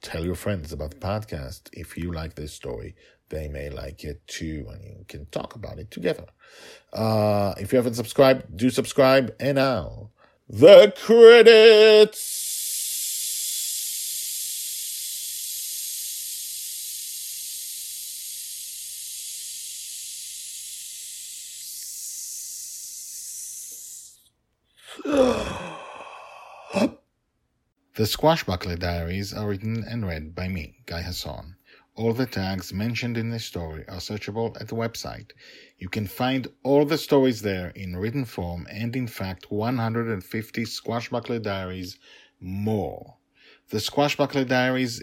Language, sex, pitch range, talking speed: English, male, 90-115 Hz, 105 wpm